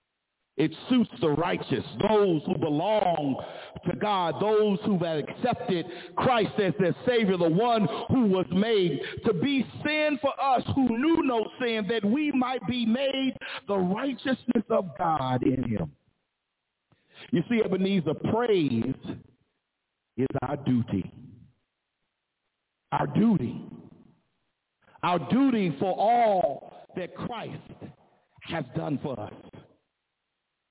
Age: 50-69